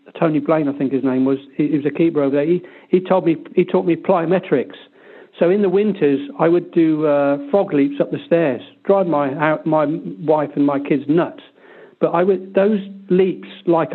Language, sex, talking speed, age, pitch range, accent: English, male, 210 wpm, 50-69, 145-175 Hz, British